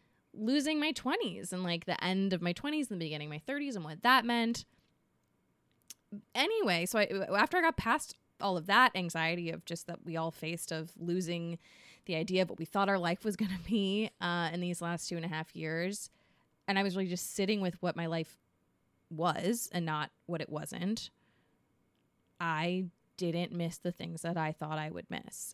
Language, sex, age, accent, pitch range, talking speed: English, female, 20-39, American, 165-215 Hz, 200 wpm